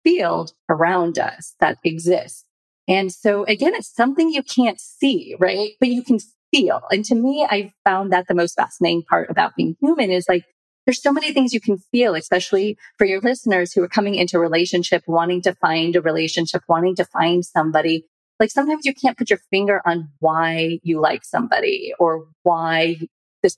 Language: English